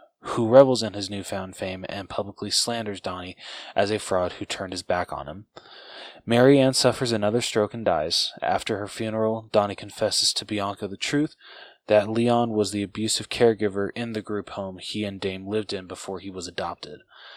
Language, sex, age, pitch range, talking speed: English, male, 20-39, 100-110 Hz, 185 wpm